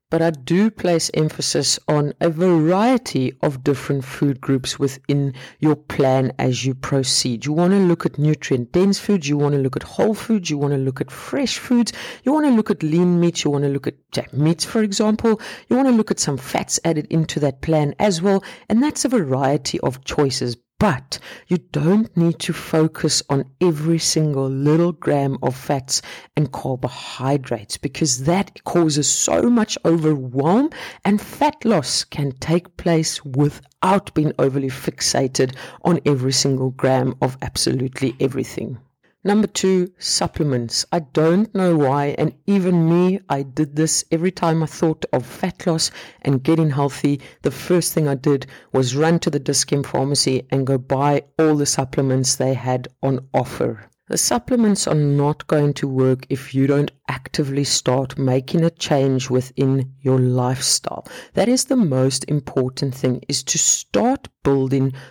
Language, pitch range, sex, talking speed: English, 135-175 Hz, female, 170 wpm